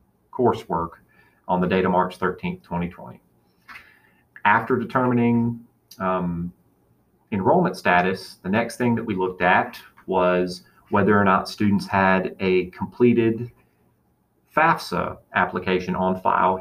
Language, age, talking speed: English, 40-59, 115 wpm